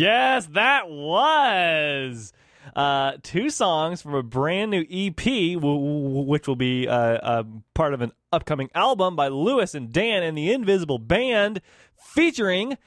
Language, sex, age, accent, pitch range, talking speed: English, male, 20-39, American, 130-195 Hz, 155 wpm